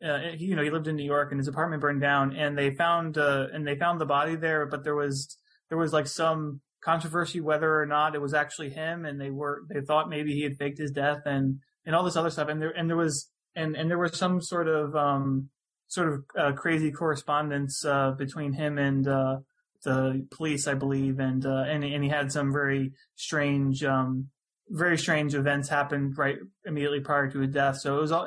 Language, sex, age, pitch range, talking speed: English, male, 20-39, 140-160 Hz, 225 wpm